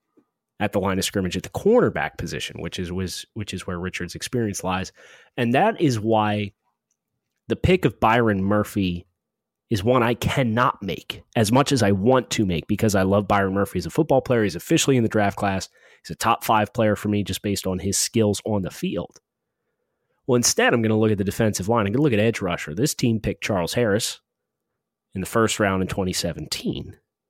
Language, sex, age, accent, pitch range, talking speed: English, male, 30-49, American, 100-120 Hz, 210 wpm